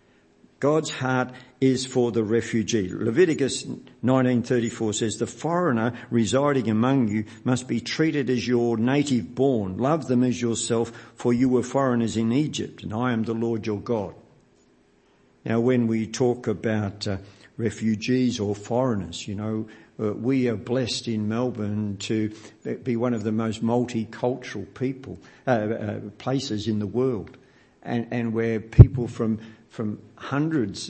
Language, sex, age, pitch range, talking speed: English, male, 50-69, 110-125 Hz, 150 wpm